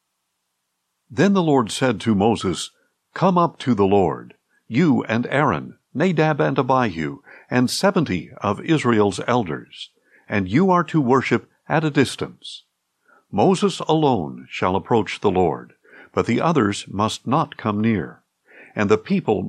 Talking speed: 140 wpm